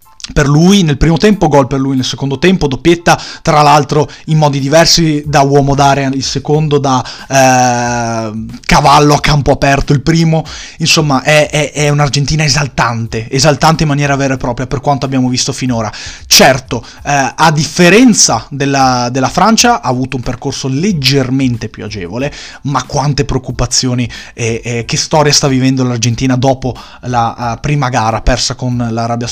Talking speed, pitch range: 160 wpm, 125-150 Hz